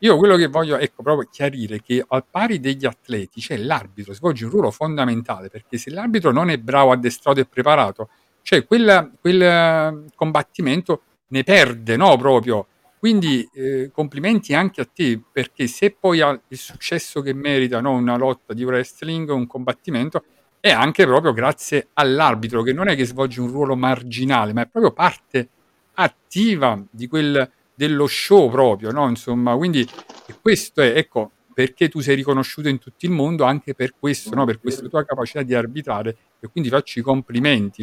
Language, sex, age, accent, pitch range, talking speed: Italian, male, 50-69, native, 120-150 Hz, 175 wpm